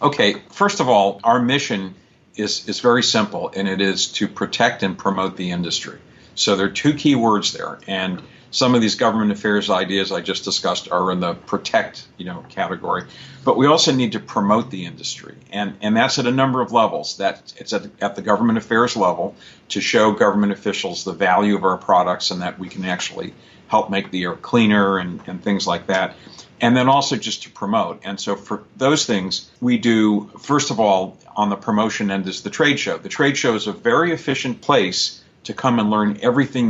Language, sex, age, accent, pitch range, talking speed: English, male, 50-69, American, 95-120 Hz, 210 wpm